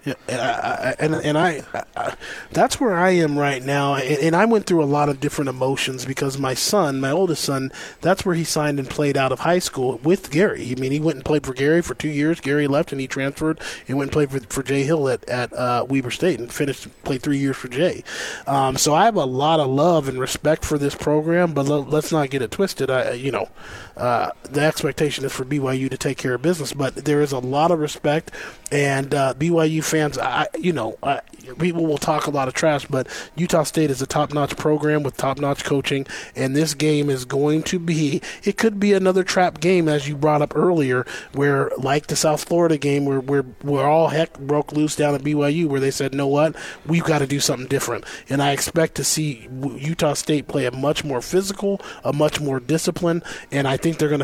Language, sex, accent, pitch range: English, male, American, 135-160 Hz